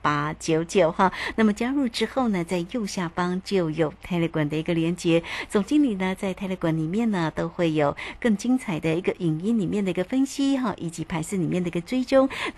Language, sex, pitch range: Chinese, female, 170-230 Hz